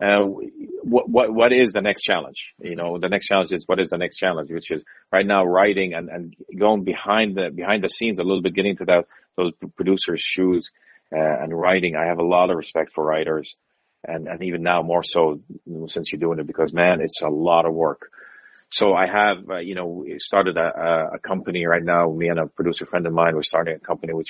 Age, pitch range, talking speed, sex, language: 40-59, 80-95 Hz, 230 wpm, male, English